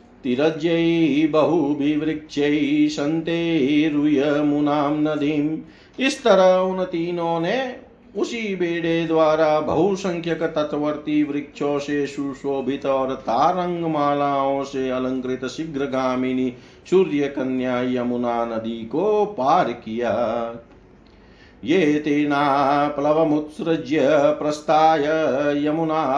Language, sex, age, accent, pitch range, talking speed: Hindi, male, 50-69, native, 145-165 Hz, 55 wpm